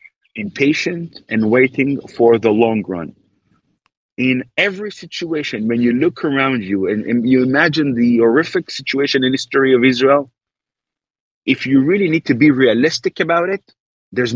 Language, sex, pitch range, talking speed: English, male, 120-150 Hz, 155 wpm